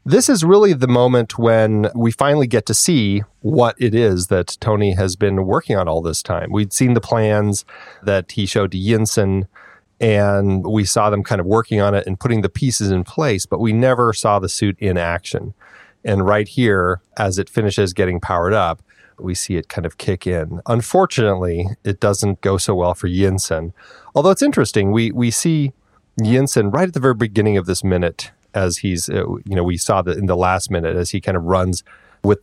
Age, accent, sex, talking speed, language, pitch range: 30-49, American, male, 205 wpm, English, 95-120 Hz